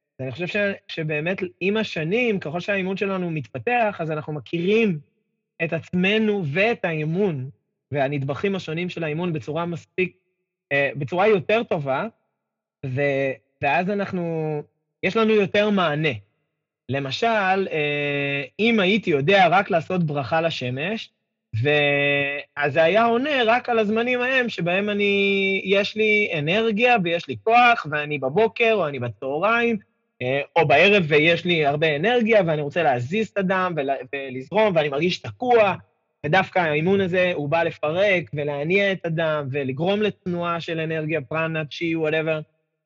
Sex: male